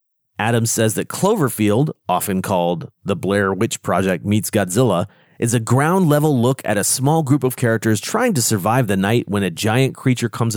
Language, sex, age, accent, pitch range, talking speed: English, male, 30-49, American, 105-145 Hz, 180 wpm